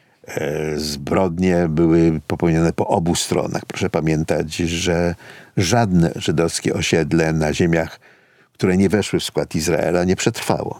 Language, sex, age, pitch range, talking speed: Polish, male, 50-69, 90-125 Hz, 120 wpm